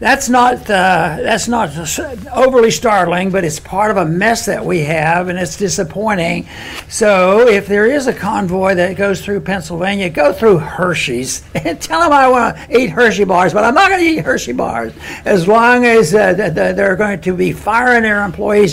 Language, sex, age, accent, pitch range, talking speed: English, male, 60-79, American, 180-215 Hz, 185 wpm